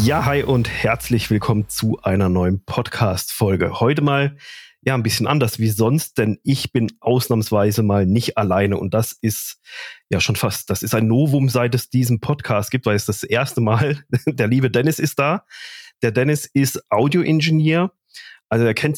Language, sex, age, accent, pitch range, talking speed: German, male, 30-49, German, 105-130 Hz, 180 wpm